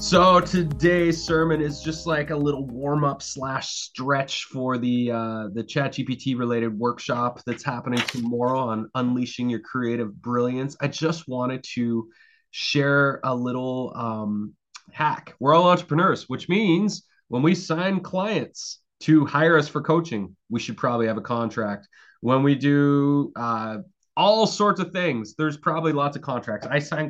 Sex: male